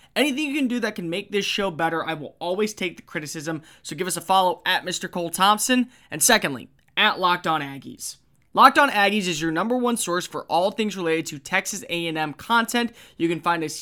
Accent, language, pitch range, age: American, English, 165-210 Hz, 20-39